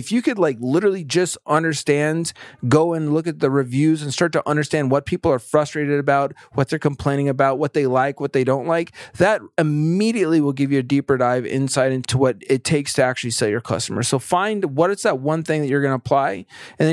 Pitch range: 130-160 Hz